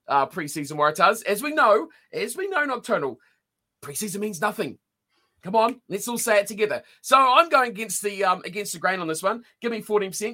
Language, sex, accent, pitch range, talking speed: English, male, Australian, 170-235 Hz, 205 wpm